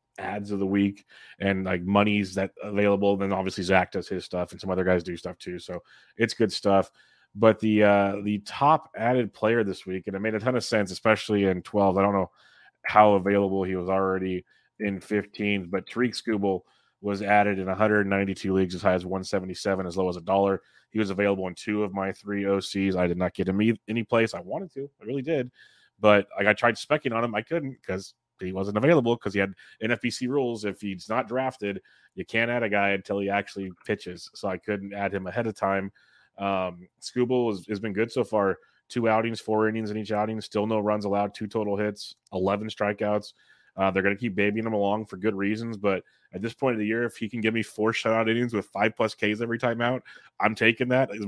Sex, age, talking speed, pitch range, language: male, 30-49, 225 wpm, 95-110 Hz, English